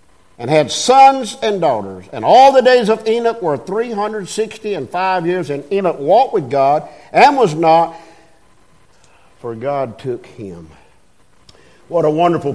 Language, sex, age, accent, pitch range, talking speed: English, male, 50-69, American, 155-195 Hz, 150 wpm